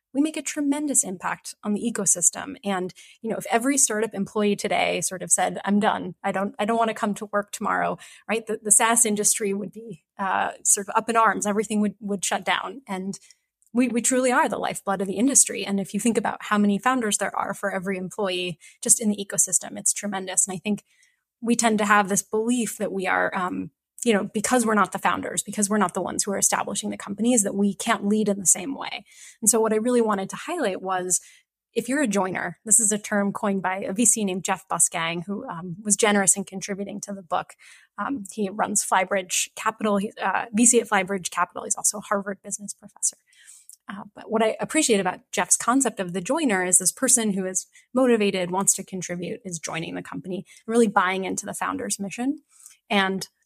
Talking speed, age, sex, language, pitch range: 220 wpm, 20-39, female, English, 195-230 Hz